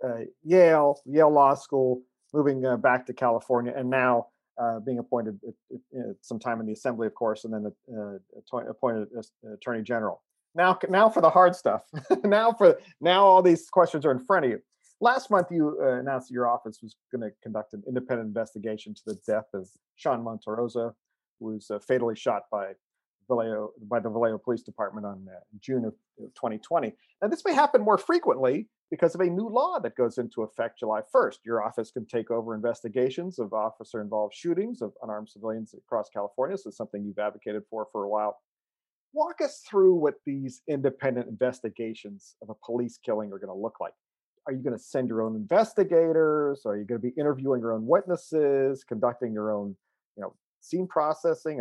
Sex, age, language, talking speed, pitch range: male, 40-59, English, 190 wpm, 110-160 Hz